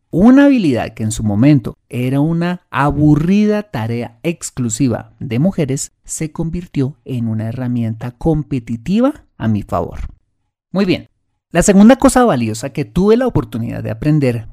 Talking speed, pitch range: 140 wpm, 115-170 Hz